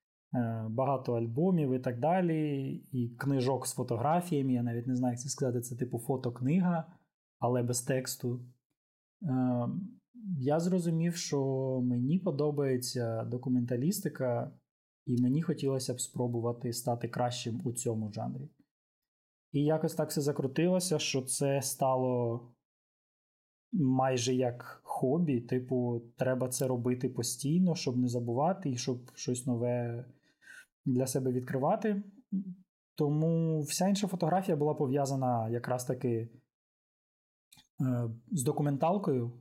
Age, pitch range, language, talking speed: 20-39, 125-150 Hz, Ukrainian, 115 wpm